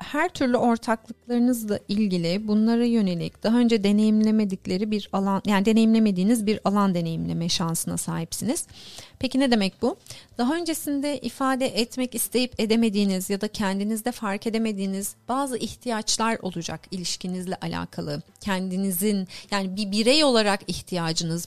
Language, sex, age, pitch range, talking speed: Turkish, female, 40-59, 195-255 Hz, 125 wpm